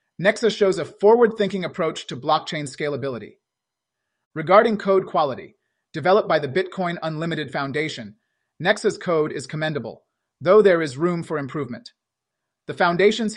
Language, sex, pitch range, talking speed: English, male, 140-185 Hz, 135 wpm